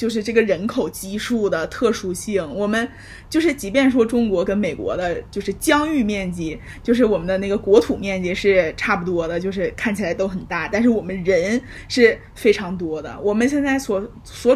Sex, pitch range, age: female, 200-265 Hz, 20-39